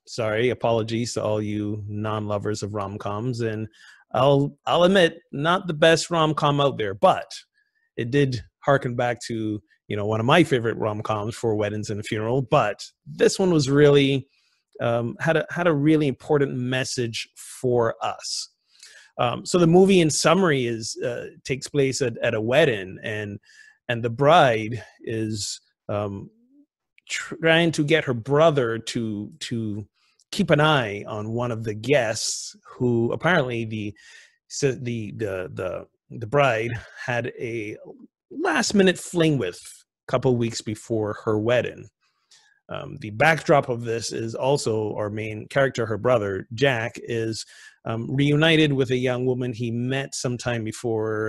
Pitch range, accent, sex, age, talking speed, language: 110-150 Hz, American, male, 30-49, 155 wpm, English